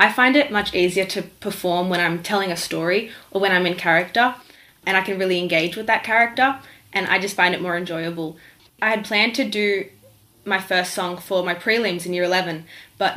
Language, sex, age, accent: English, female, 20-39, Australian